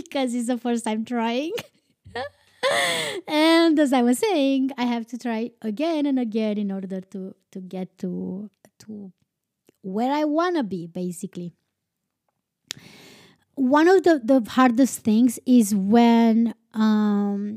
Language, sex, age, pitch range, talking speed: English, female, 20-39, 210-260 Hz, 135 wpm